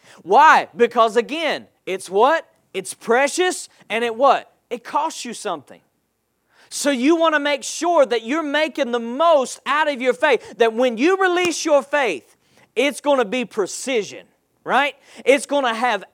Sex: male